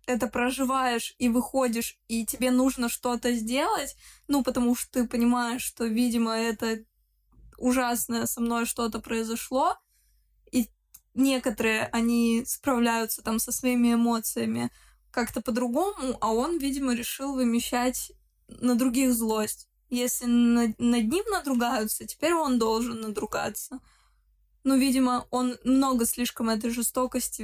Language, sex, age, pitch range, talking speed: Russian, female, 20-39, 225-255 Hz, 120 wpm